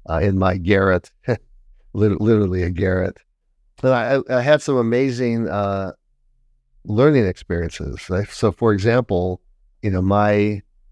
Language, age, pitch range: English, 50-69, 90-105 Hz